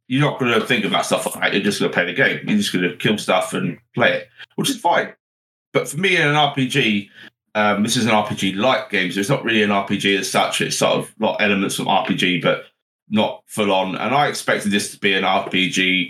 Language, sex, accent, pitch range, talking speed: English, male, British, 100-135 Hz, 245 wpm